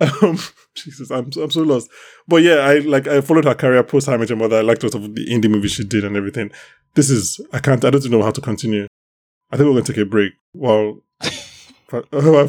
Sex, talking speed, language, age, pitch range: male, 230 wpm, English, 20-39, 100-125 Hz